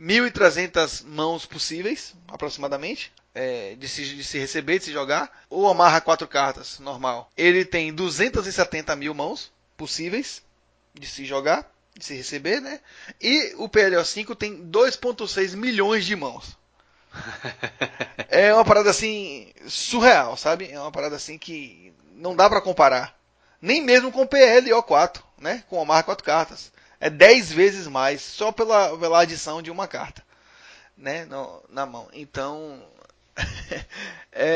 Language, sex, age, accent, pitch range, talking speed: Portuguese, male, 20-39, Brazilian, 150-205 Hz, 140 wpm